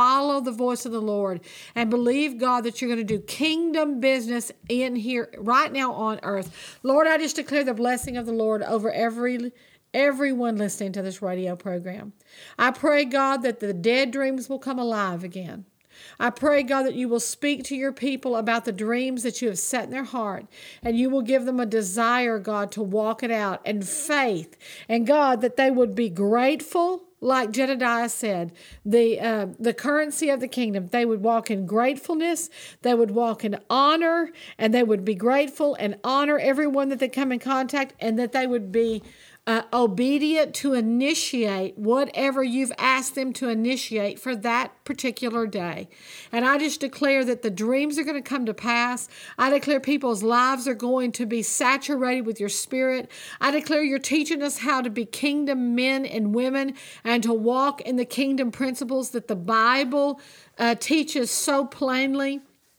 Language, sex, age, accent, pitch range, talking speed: English, female, 50-69, American, 225-275 Hz, 185 wpm